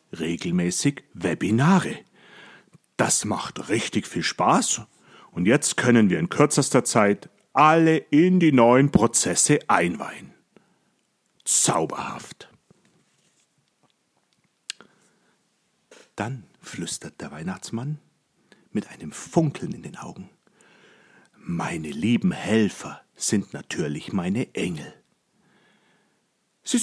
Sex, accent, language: male, German, German